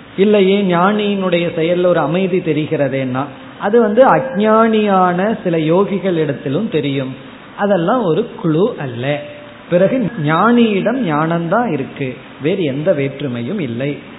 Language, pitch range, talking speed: Tamil, 150-195 Hz, 105 wpm